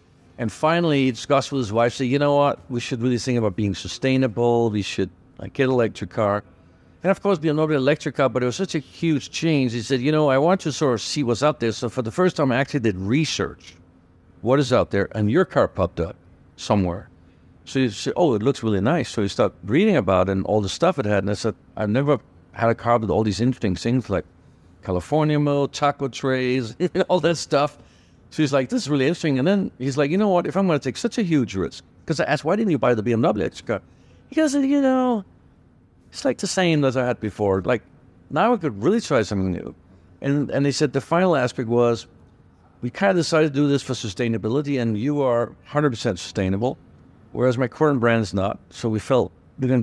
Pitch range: 105-145 Hz